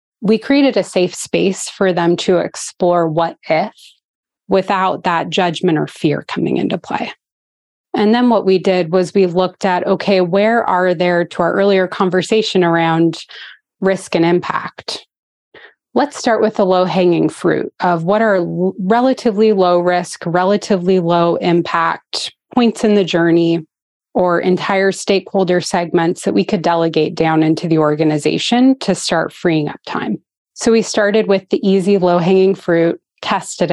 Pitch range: 170-200 Hz